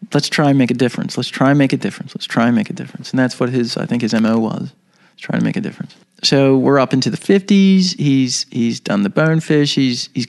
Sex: male